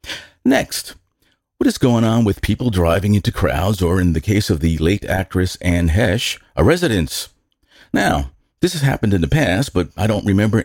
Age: 50-69